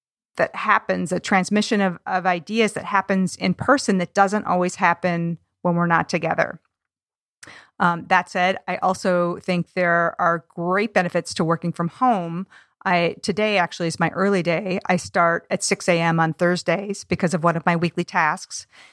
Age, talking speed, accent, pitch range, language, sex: 40-59, 180 wpm, American, 170-195 Hz, English, female